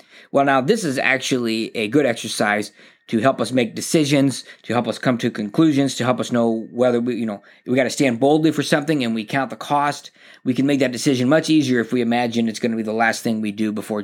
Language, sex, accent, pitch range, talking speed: English, male, American, 115-155 Hz, 250 wpm